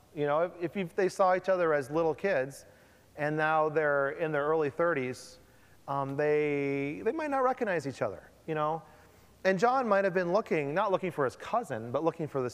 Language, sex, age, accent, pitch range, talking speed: English, male, 30-49, American, 145-210 Hz, 205 wpm